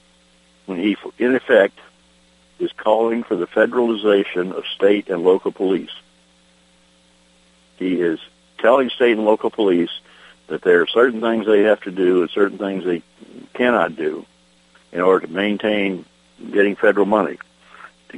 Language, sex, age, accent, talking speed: English, male, 60-79, American, 145 wpm